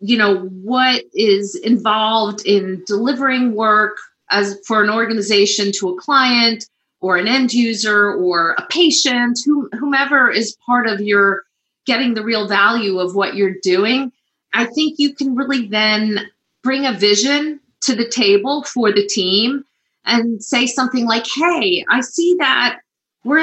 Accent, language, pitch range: American, English, 210-280 Hz